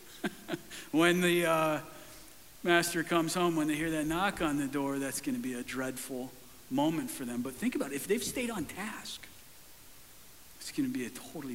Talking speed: 195 wpm